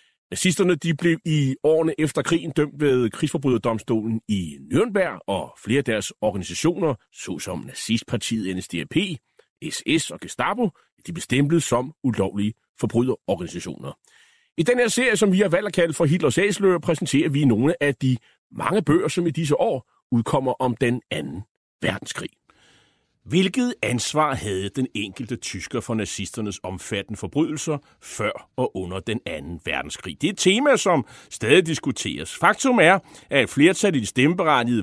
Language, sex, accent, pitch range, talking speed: Danish, male, native, 115-180 Hz, 150 wpm